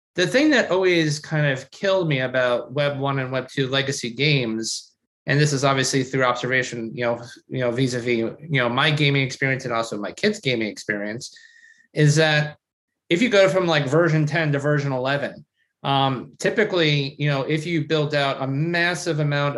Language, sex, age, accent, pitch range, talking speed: English, male, 30-49, American, 135-165 Hz, 185 wpm